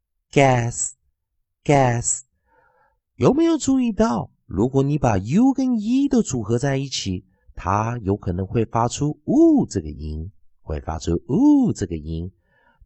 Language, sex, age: Chinese, male, 50-69